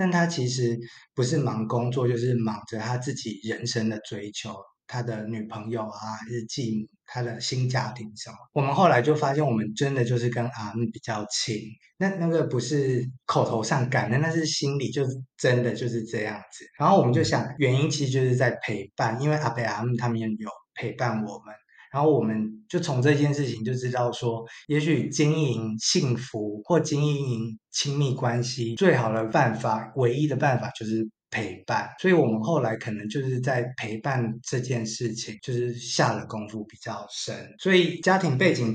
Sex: male